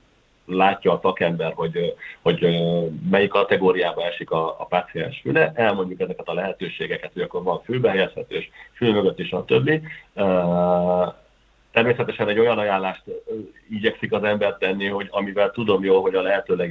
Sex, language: male, Hungarian